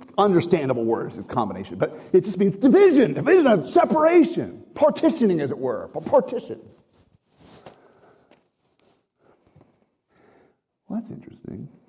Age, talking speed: 50-69, 100 wpm